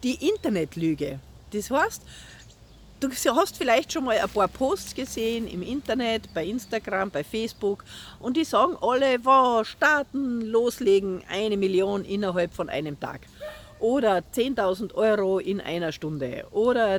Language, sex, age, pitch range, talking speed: German, female, 50-69, 180-270 Hz, 140 wpm